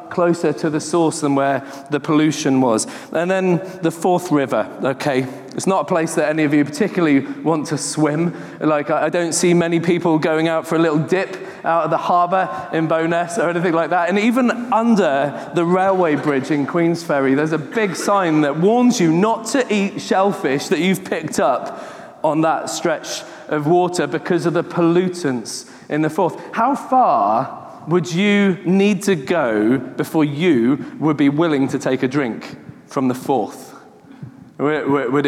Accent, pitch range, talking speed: British, 145-185 Hz, 175 wpm